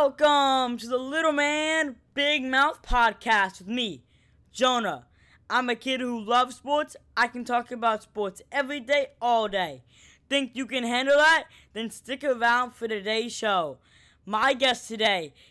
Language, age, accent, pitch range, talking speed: English, 10-29, American, 205-265 Hz, 155 wpm